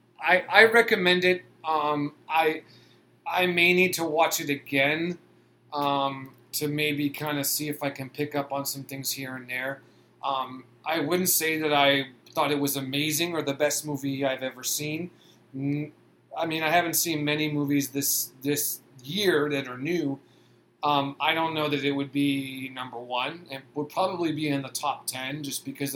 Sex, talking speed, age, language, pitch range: male, 185 wpm, 30-49, English, 130-155 Hz